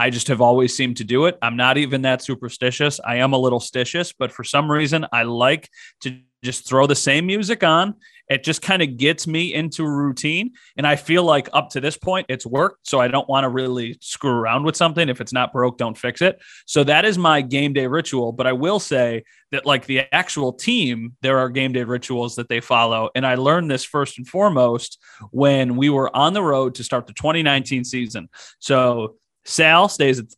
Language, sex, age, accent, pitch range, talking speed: English, male, 30-49, American, 125-155 Hz, 225 wpm